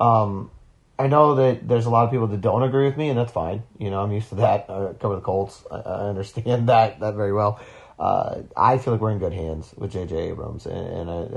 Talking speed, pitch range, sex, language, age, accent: 245 wpm, 115-130 Hz, male, English, 30-49, American